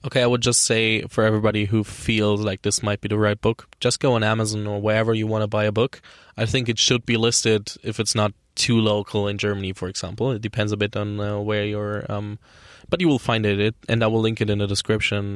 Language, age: English, 20-39